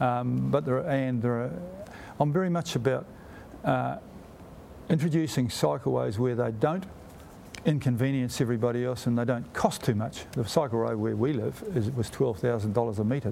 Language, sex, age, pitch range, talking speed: English, male, 50-69, 120-150 Hz, 165 wpm